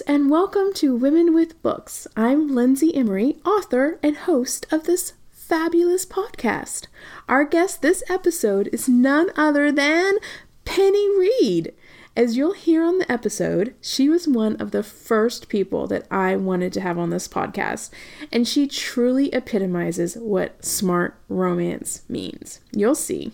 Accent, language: American, English